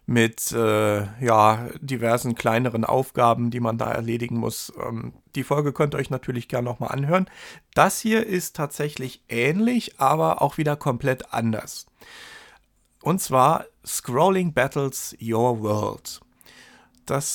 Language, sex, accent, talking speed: German, male, German, 130 wpm